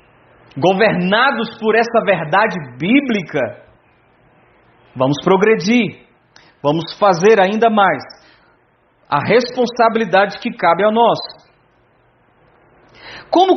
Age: 40-59